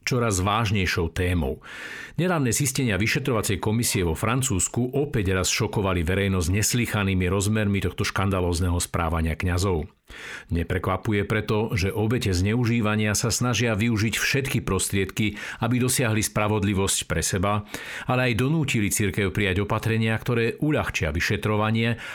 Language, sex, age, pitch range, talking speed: Slovak, male, 50-69, 95-115 Hz, 115 wpm